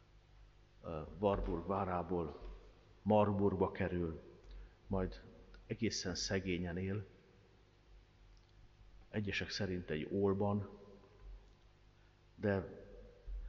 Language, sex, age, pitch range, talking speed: Hungarian, male, 50-69, 90-105 Hz, 60 wpm